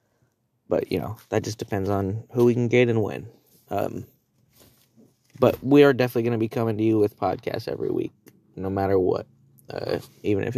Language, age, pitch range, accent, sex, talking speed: English, 20-39, 110-125 Hz, American, male, 195 wpm